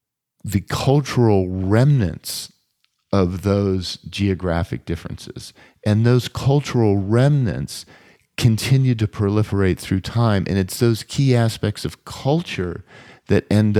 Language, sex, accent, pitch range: English, male, American, 90-115 Hz